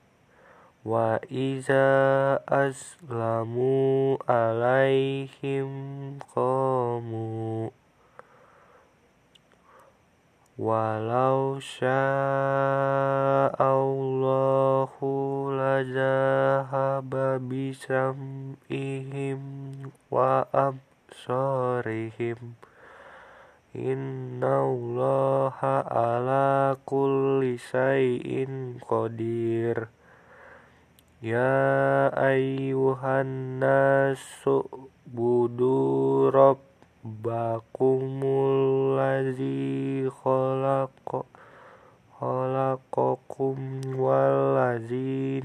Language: Indonesian